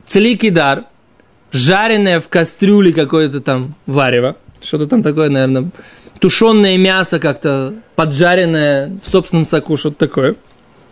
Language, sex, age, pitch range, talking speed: Russian, male, 20-39, 160-220 Hz, 115 wpm